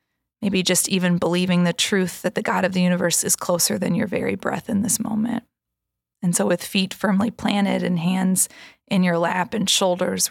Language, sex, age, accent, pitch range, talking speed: English, female, 20-39, American, 180-215 Hz, 200 wpm